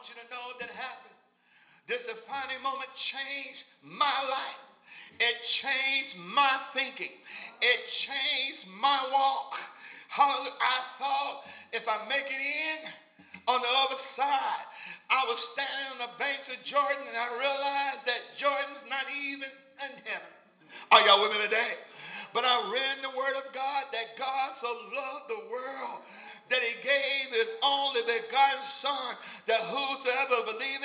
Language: English